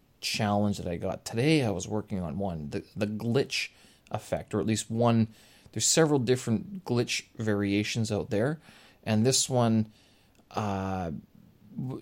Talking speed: 145 wpm